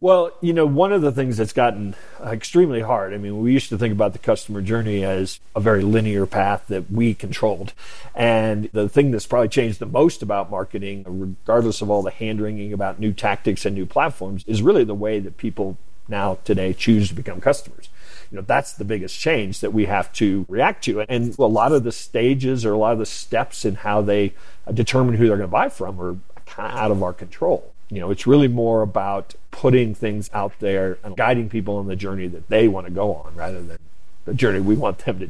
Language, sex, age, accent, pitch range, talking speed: English, male, 40-59, American, 100-120 Hz, 225 wpm